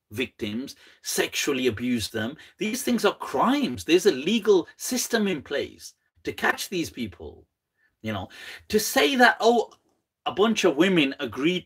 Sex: male